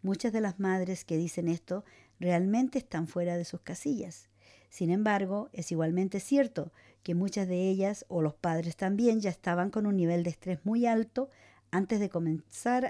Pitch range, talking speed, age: 155-210 Hz, 175 wpm, 50-69